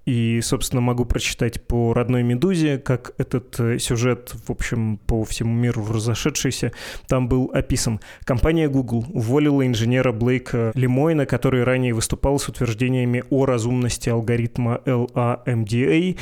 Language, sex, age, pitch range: Russian, male, 20-39, 120-135 Hz